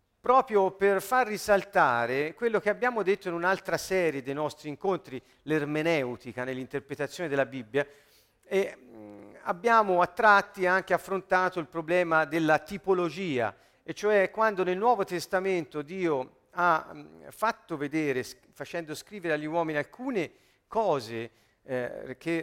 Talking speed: 120 wpm